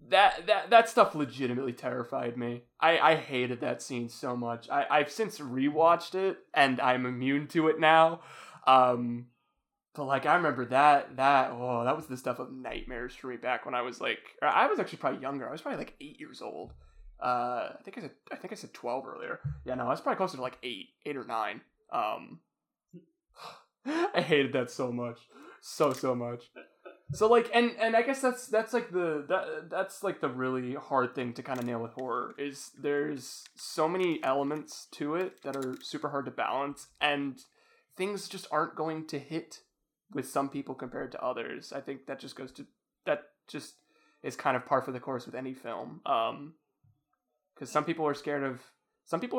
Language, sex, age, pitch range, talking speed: English, male, 20-39, 125-160 Hz, 200 wpm